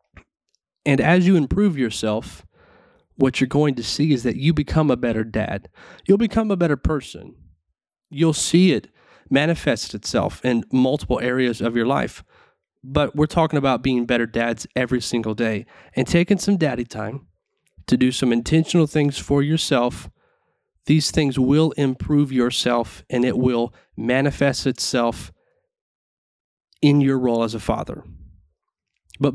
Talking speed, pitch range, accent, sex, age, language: 145 wpm, 120-155 Hz, American, male, 30-49, English